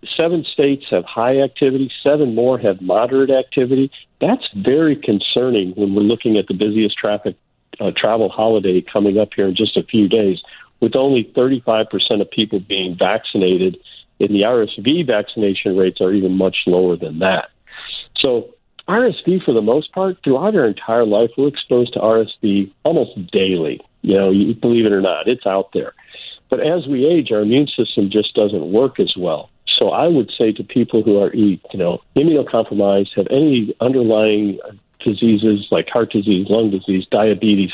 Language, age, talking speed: English, 50-69, 170 wpm